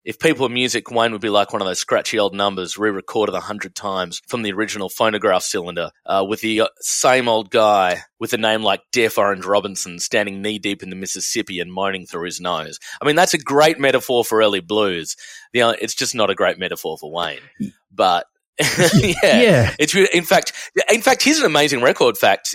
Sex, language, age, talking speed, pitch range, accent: male, English, 30-49, 205 wpm, 100-150 Hz, Australian